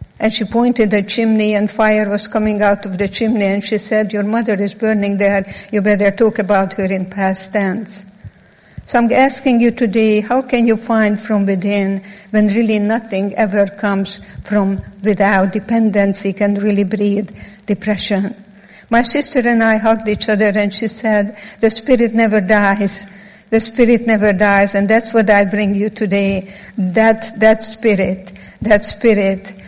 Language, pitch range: German, 200-220 Hz